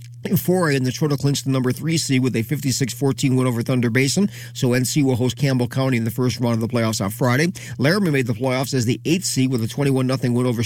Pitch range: 120-145 Hz